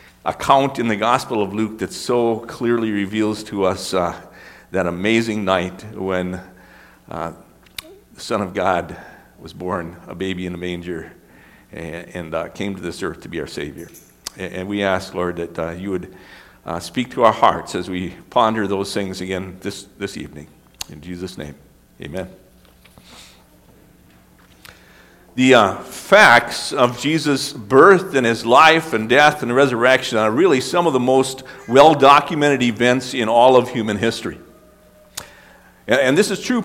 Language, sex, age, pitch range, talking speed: English, male, 50-69, 100-150 Hz, 160 wpm